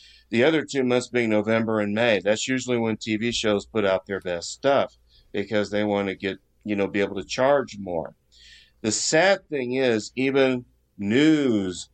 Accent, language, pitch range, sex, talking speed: American, English, 100-125 Hz, male, 180 wpm